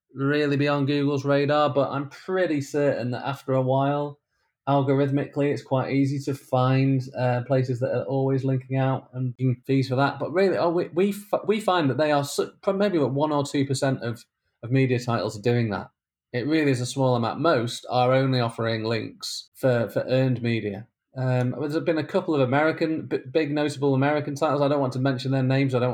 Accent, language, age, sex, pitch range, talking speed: British, English, 20-39, male, 125-145 Hz, 200 wpm